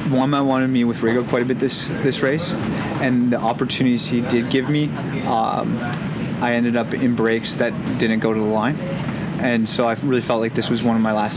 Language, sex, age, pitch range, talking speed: English, male, 30-49, 115-130 Hz, 220 wpm